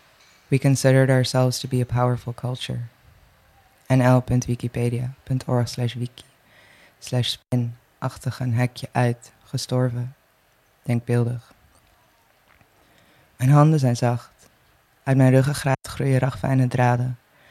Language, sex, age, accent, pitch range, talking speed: Dutch, female, 20-39, Dutch, 125-135 Hz, 95 wpm